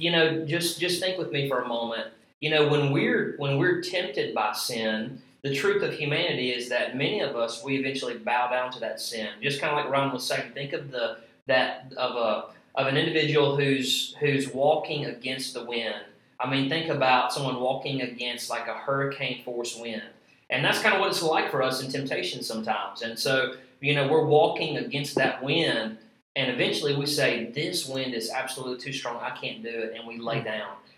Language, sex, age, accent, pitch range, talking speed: English, male, 30-49, American, 125-150 Hz, 210 wpm